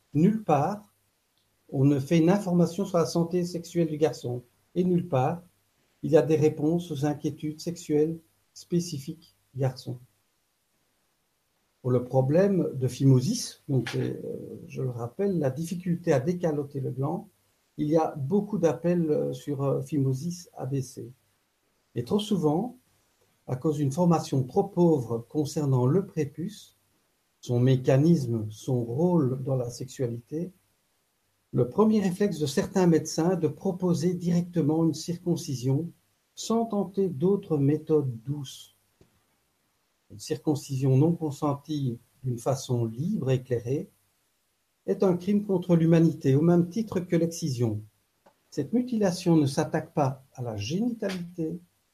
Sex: male